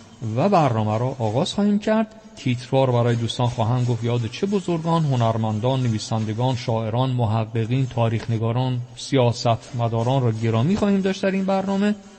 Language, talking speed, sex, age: Persian, 140 wpm, male, 50-69